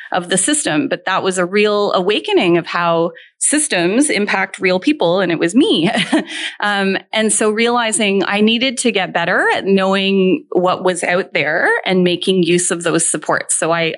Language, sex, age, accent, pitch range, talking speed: English, female, 30-49, American, 180-240 Hz, 180 wpm